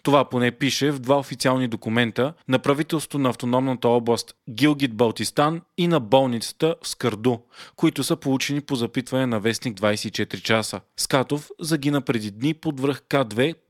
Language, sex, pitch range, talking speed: Bulgarian, male, 120-150 Hz, 155 wpm